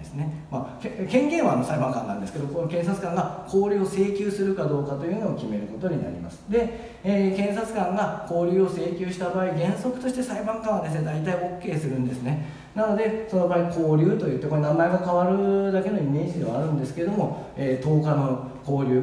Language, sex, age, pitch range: Japanese, male, 40-59, 135-185 Hz